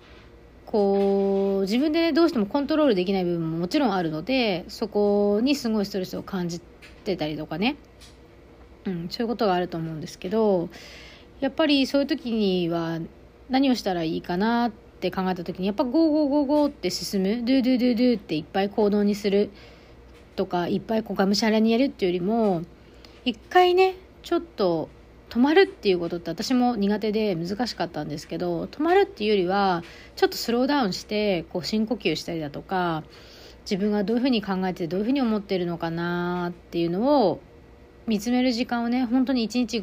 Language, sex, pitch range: Japanese, female, 180-250 Hz